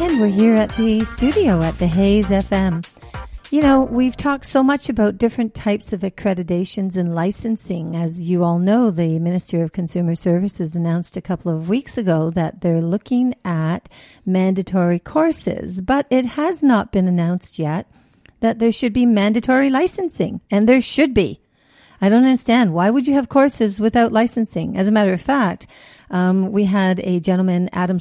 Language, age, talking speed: English, 50-69, 175 wpm